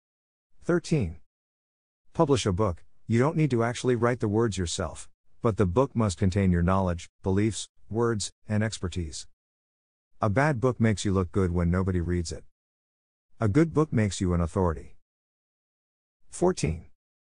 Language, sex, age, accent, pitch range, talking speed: English, male, 50-69, American, 85-110 Hz, 150 wpm